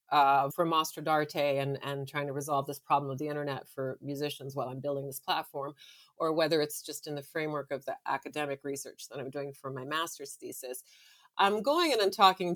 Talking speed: 215 wpm